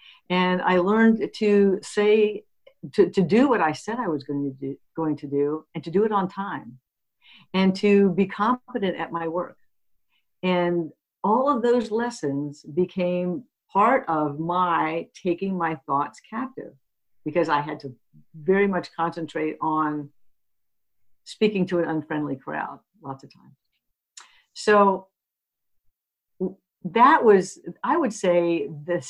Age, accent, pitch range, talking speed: 60-79, American, 155-200 Hz, 135 wpm